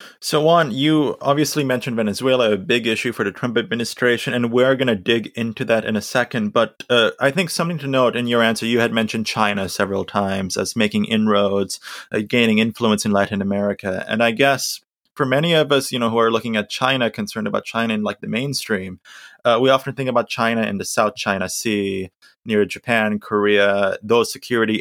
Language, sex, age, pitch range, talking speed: English, male, 20-39, 100-125 Hz, 205 wpm